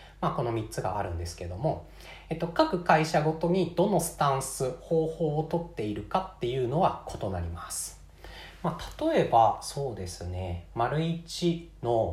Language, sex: Japanese, male